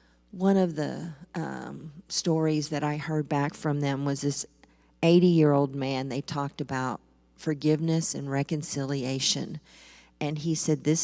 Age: 40-59